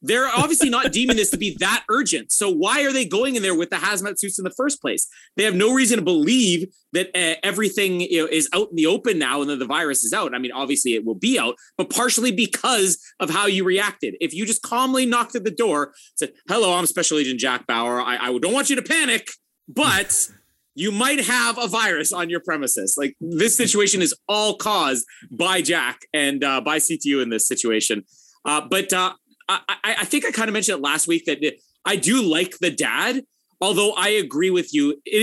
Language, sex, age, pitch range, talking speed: English, male, 30-49, 150-240 Hz, 220 wpm